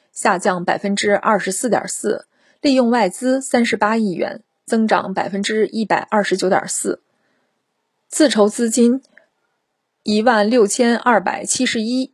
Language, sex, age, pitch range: Chinese, female, 30-49, 195-250 Hz